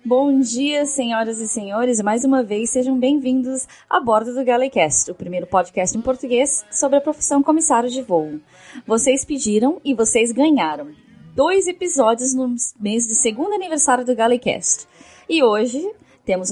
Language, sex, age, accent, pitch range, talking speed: Portuguese, female, 20-39, Brazilian, 200-265 Hz, 155 wpm